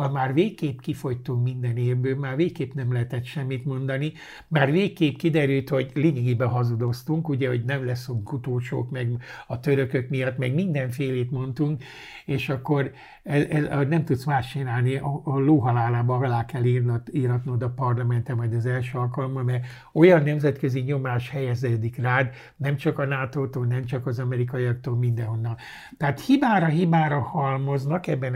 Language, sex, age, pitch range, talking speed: Hungarian, male, 60-79, 125-145 Hz, 150 wpm